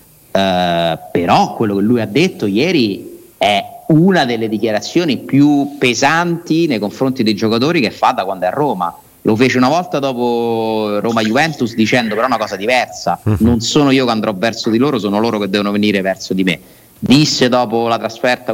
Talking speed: 180 wpm